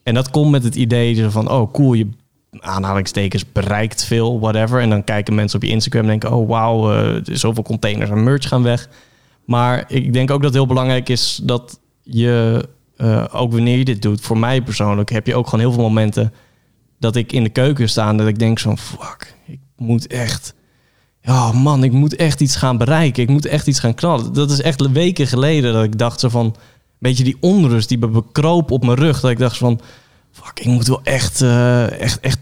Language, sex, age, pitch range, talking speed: Dutch, male, 20-39, 110-130 Hz, 215 wpm